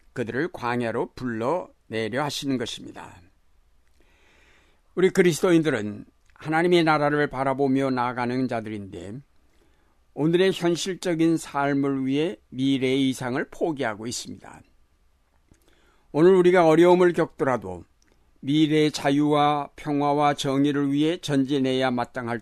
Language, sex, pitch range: Korean, male, 110-150 Hz